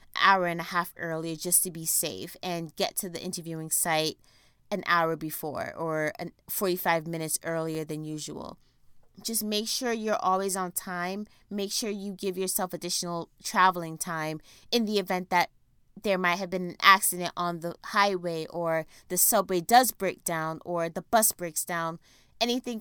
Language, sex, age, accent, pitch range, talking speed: English, female, 20-39, American, 160-185 Hz, 170 wpm